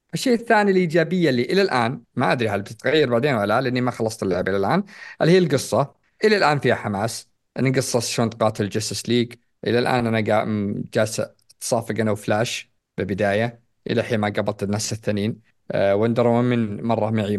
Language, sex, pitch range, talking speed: Arabic, male, 110-135 Hz, 175 wpm